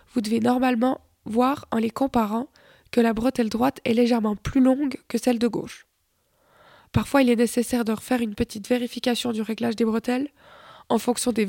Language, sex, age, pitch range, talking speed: French, female, 20-39, 225-260 Hz, 185 wpm